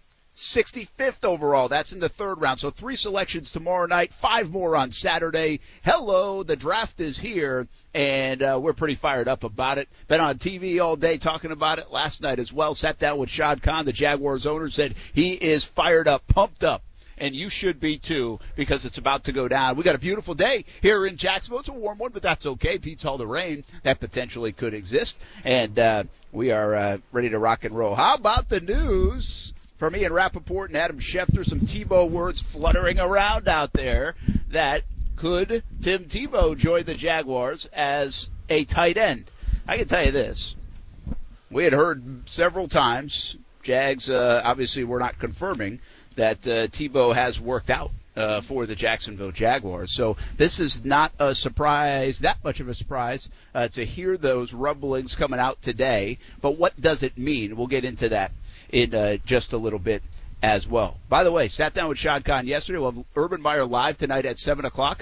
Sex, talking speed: male, 195 wpm